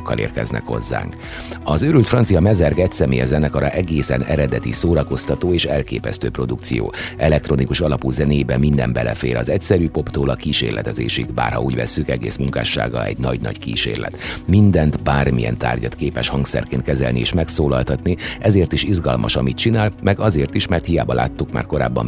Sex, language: male, Hungarian